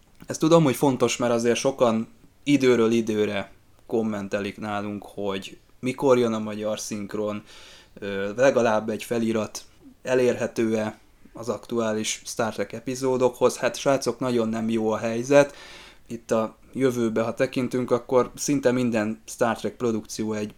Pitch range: 105-125 Hz